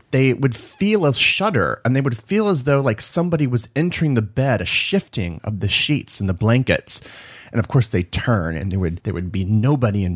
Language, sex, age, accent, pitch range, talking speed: English, male, 30-49, American, 110-155 Hz, 225 wpm